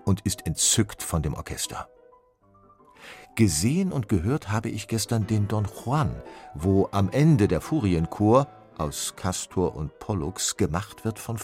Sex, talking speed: male, 140 wpm